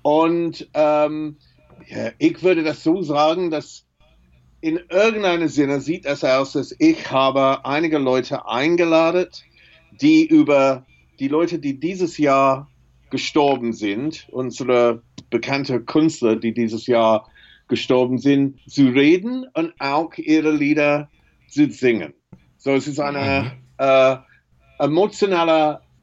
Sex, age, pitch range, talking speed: male, 50-69, 135-160 Hz, 120 wpm